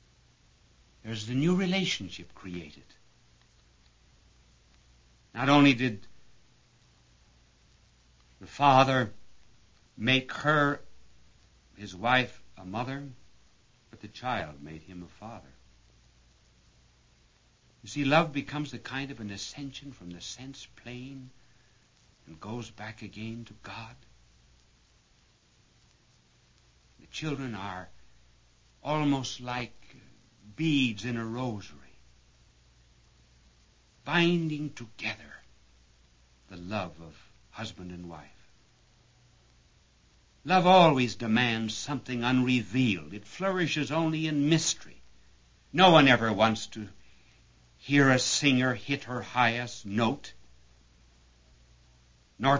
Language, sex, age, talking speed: English, male, 60-79, 95 wpm